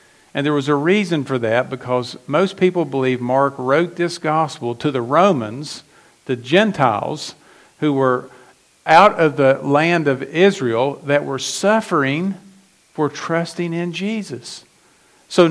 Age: 50-69